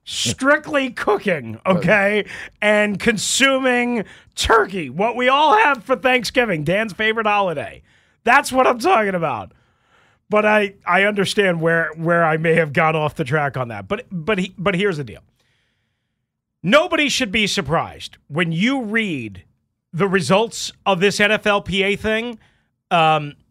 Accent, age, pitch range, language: American, 40-59, 150-225 Hz, English